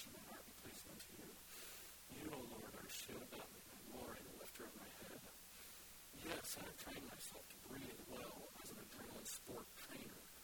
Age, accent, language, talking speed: 50-69, American, English, 165 wpm